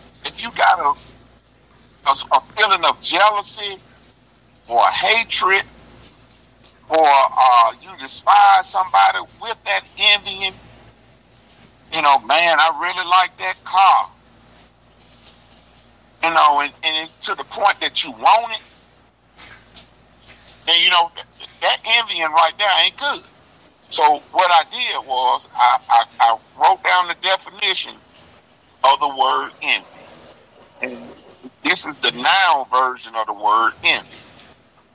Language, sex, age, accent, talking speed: English, male, 50-69, American, 130 wpm